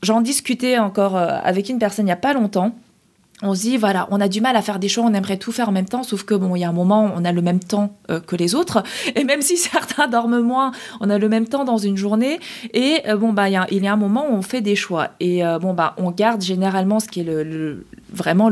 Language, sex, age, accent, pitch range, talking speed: French, female, 20-39, French, 195-245 Hz, 280 wpm